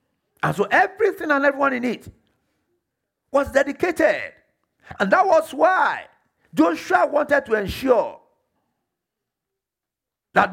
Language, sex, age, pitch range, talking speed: English, male, 50-69, 180-280 Hz, 105 wpm